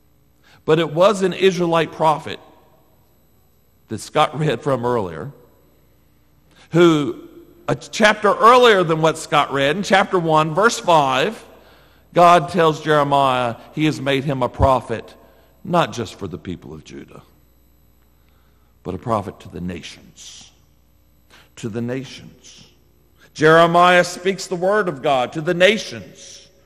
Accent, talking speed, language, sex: American, 130 wpm, English, male